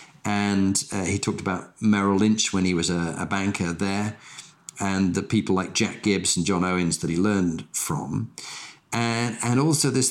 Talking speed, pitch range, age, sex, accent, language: 185 wpm, 95-120 Hz, 40-59, male, British, English